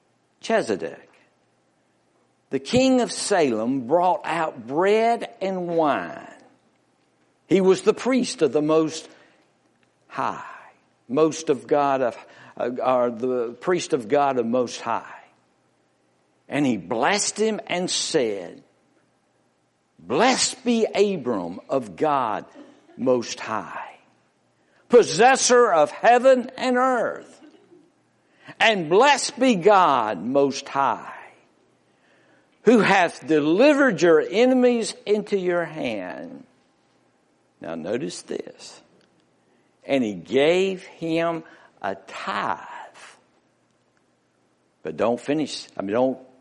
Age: 60-79